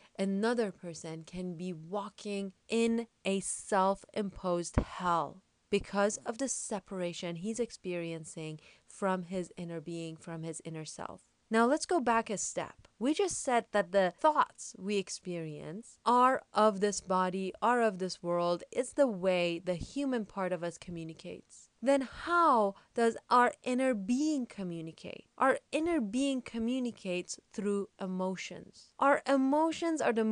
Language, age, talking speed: English, 30-49, 140 wpm